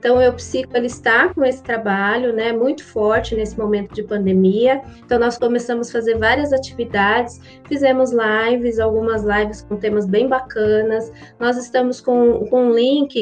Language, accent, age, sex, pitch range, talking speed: Portuguese, Brazilian, 20-39, female, 215-250 Hz, 160 wpm